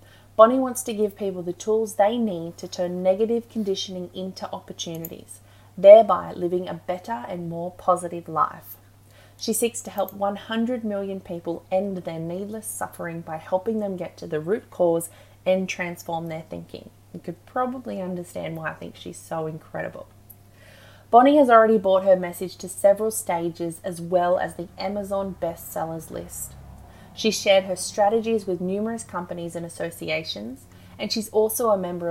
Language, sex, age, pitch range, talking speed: English, female, 30-49, 160-205 Hz, 160 wpm